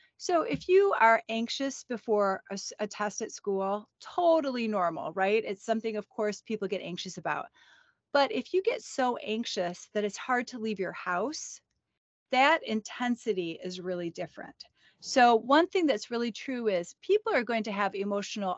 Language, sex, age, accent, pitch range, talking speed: English, female, 30-49, American, 190-240 Hz, 170 wpm